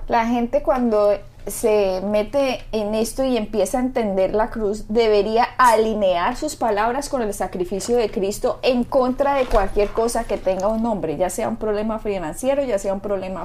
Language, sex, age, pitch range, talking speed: Spanish, female, 20-39, 200-265 Hz, 180 wpm